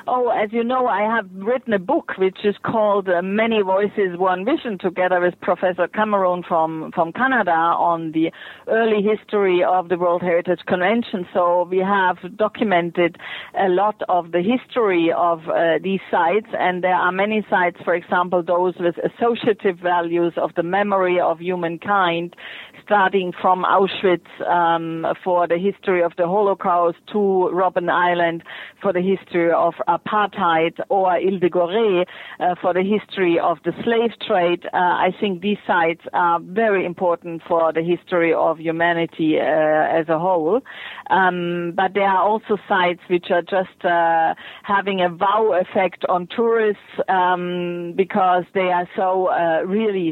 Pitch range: 175-200 Hz